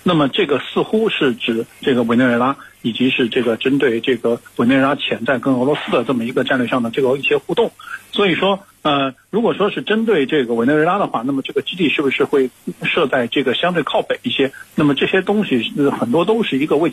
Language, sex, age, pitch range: Chinese, male, 50-69, 130-210 Hz